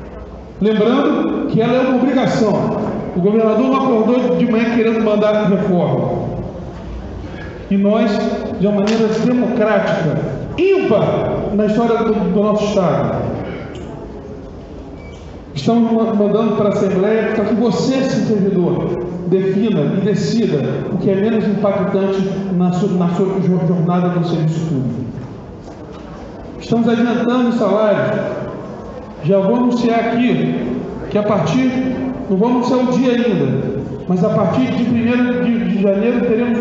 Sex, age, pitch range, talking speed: male, 40-59, 195-230 Hz, 130 wpm